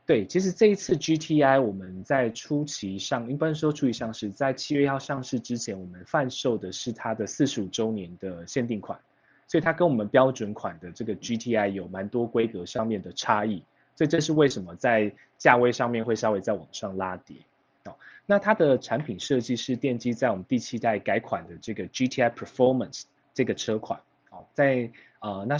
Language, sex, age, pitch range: Chinese, male, 20-39, 105-135 Hz